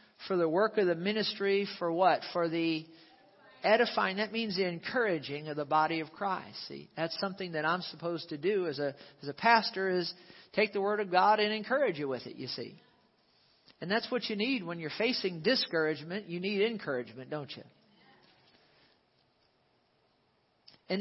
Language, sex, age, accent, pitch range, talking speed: English, male, 50-69, American, 165-210 Hz, 175 wpm